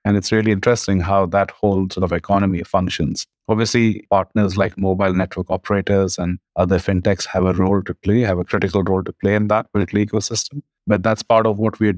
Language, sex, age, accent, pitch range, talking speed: English, male, 30-49, Indian, 90-105 Hz, 205 wpm